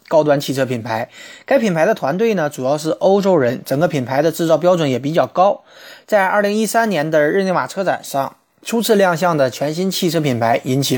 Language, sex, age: Chinese, male, 20-39